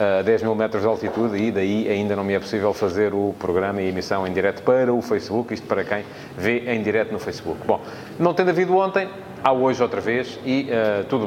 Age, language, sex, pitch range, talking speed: 30-49, English, male, 100-120 Hz, 235 wpm